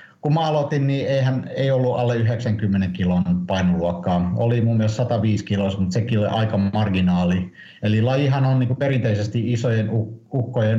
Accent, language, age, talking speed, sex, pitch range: native, Finnish, 50-69, 150 wpm, male, 100-125 Hz